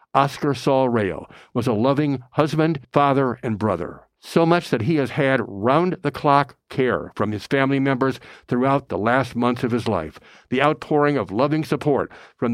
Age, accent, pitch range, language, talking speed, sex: 60-79, American, 115-145 Hz, English, 170 wpm, male